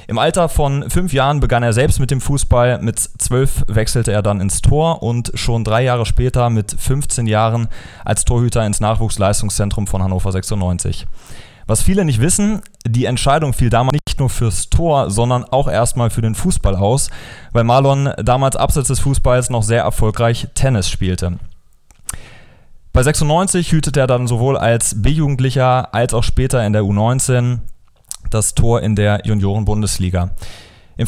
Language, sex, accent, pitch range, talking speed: German, male, German, 105-130 Hz, 160 wpm